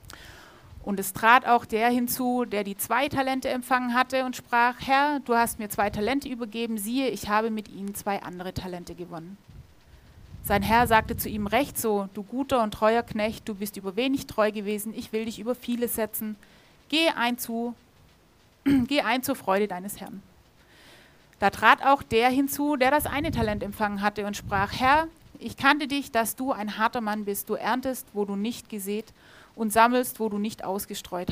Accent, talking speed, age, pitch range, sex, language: German, 190 wpm, 30-49, 205-255 Hz, female, German